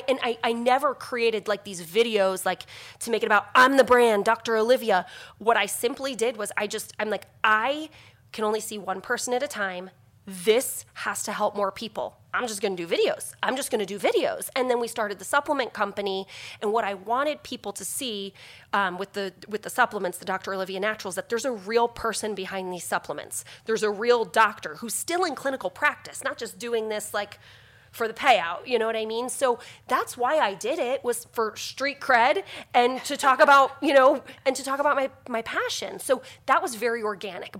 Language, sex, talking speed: English, female, 215 wpm